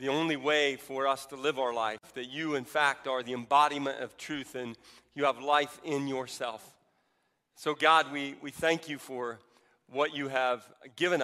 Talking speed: 185 wpm